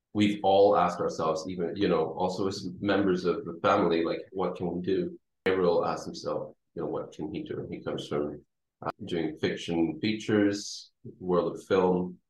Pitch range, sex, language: 85-110 Hz, male, English